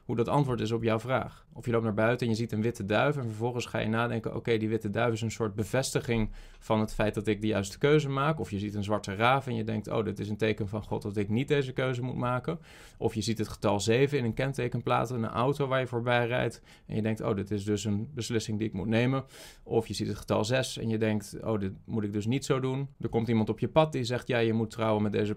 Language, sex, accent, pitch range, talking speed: Dutch, male, Dutch, 110-145 Hz, 295 wpm